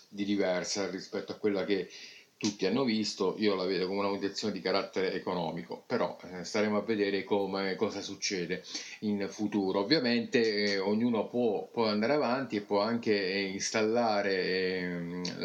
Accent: native